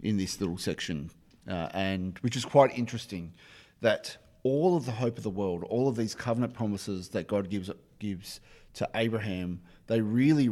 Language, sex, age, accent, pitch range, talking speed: English, male, 40-59, Australian, 95-120 Hz, 175 wpm